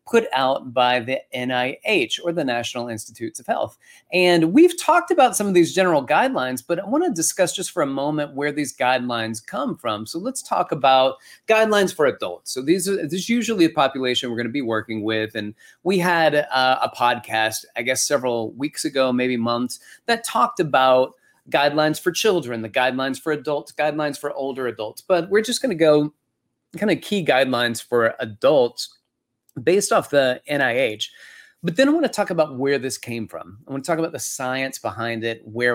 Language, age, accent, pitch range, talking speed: English, 30-49, American, 120-175 Hz, 190 wpm